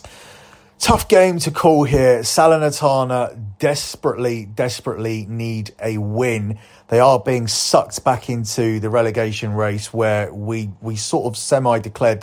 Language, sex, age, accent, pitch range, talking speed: English, male, 30-49, British, 105-125 Hz, 130 wpm